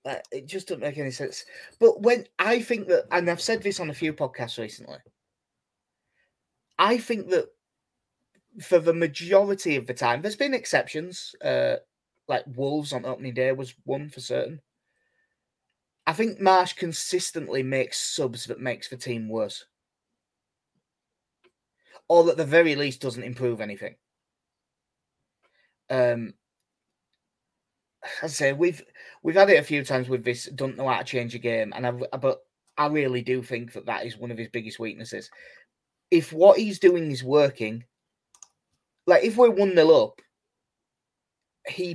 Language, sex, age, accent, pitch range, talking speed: English, male, 20-39, British, 125-190 Hz, 155 wpm